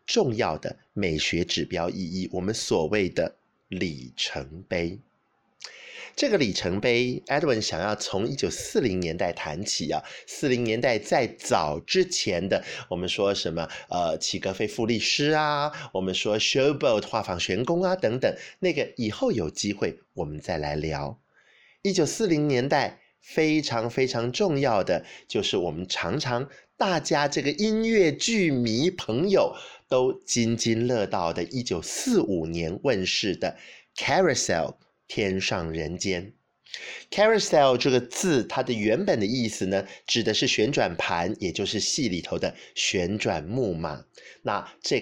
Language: Chinese